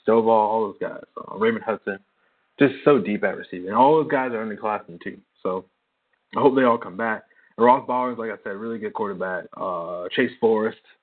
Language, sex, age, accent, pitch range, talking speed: English, male, 20-39, American, 105-130 Hz, 210 wpm